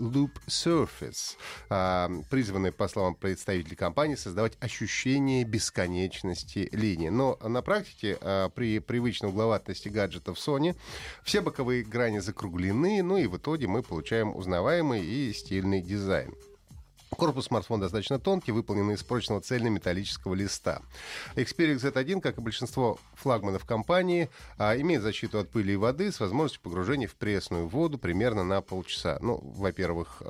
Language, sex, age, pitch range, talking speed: Russian, male, 30-49, 95-130 Hz, 135 wpm